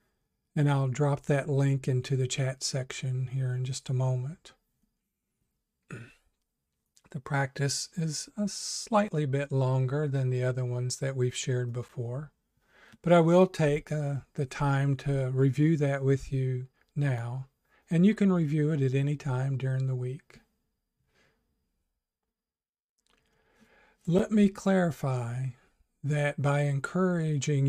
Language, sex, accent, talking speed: English, male, American, 130 wpm